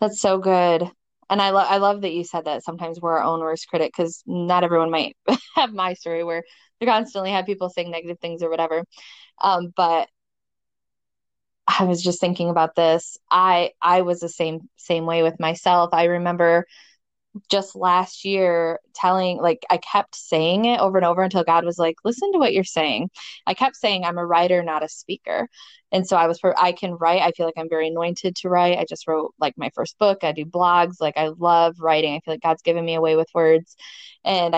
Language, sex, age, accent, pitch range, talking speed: English, female, 20-39, American, 160-185 Hz, 215 wpm